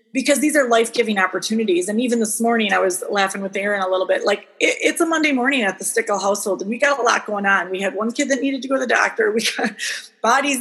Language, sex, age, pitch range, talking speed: English, female, 30-49, 190-235 Hz, 270 wpm